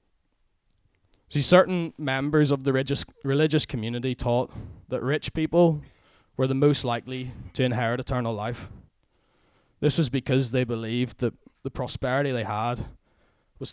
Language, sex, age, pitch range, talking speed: English, male, 20-39, 115-140 Hz, 135 wpm